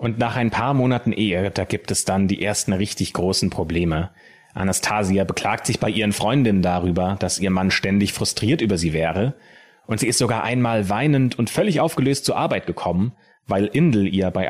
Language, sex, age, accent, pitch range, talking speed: German, male, 30-49, German, 95-125 Hz, 190 wpm